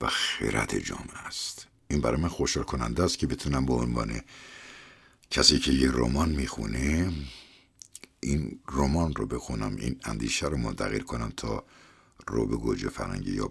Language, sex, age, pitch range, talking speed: Persian, male, 60-79, 70-90 Hz, 150 wpm